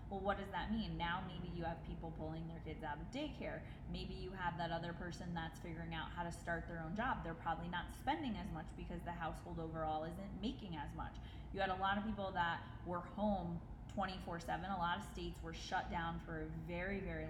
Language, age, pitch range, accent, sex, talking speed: English, 20-39, 160-195 Hz, American, female, 230 wpm